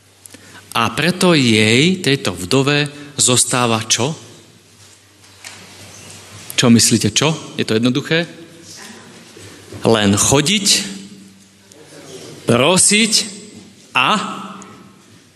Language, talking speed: Slovak, 65 wpm